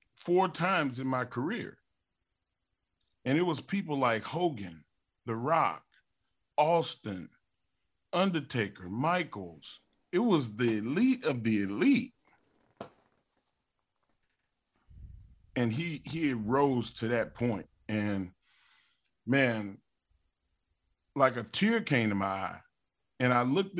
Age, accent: 40-59, American